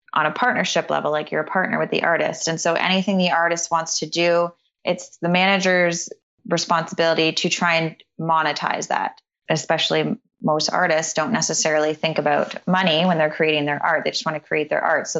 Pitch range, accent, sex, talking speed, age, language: 160-175 Hz, American, female, 195 wpm, 20-39, English